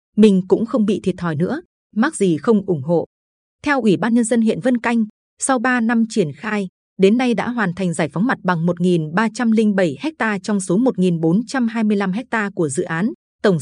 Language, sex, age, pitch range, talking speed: Vietnamese, female, 20-39, 180-230 Hz, 195 wpm